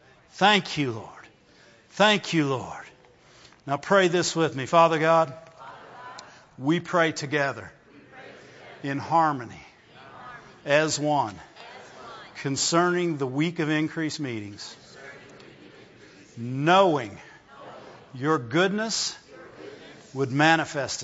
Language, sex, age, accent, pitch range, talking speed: English, male, 50-69, American, 155-205 Hz, 90 wpm